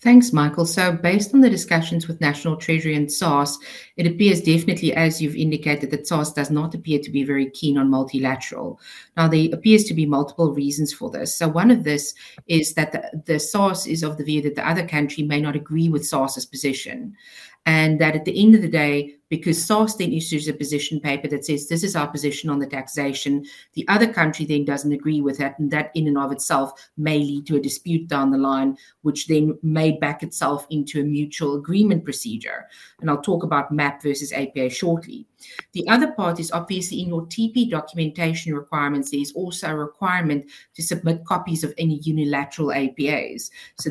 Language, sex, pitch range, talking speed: English, female, 145-170 Hz, 200 wpm